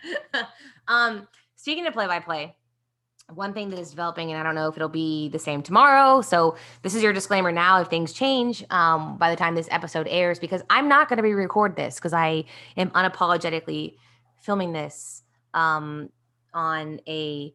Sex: female